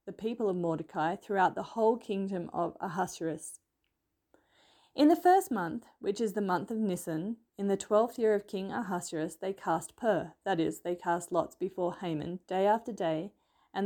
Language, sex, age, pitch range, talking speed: English, female, 30-49, 185-255 Hz, 180 wpm